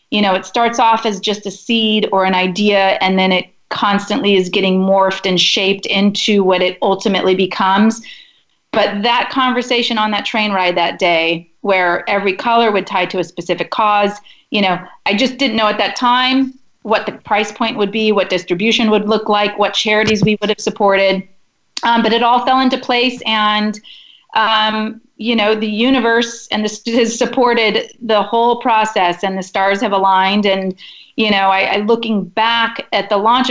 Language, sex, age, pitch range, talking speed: English, female, 40-59, 195-230 Hz, 190 wpm